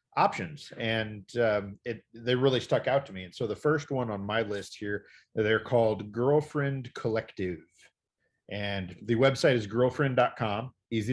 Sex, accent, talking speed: male, American, 155 wpm